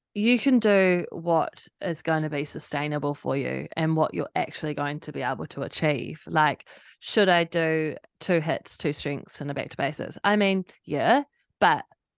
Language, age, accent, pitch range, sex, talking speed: English, 20-39, Australian, 155-195 Hz, female, 175 wpm